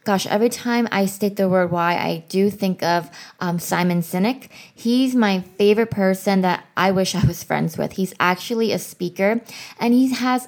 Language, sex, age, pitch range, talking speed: English, female, 20-39, 185-220 Hz, 190 wpm